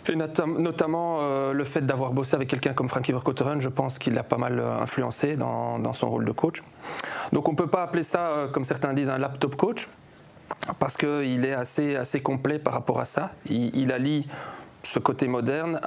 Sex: male